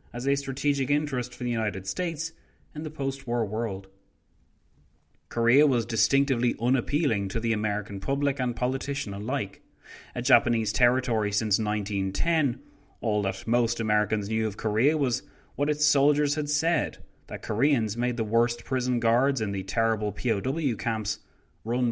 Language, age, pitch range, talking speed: English, 30-49, 105-135 Hz, 150 wpm